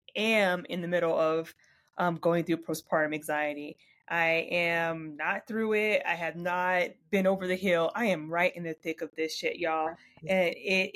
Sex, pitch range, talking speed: female, 170-225 Hz, 185 wpm